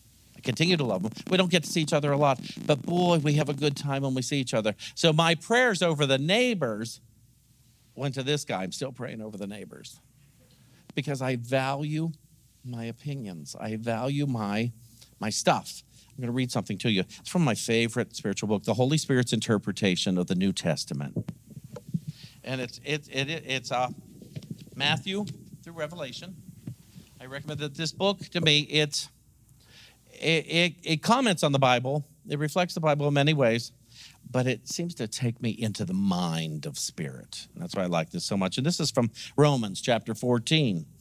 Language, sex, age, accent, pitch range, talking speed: English, male, 50-69, American, 115-155 Hz, 185 wpm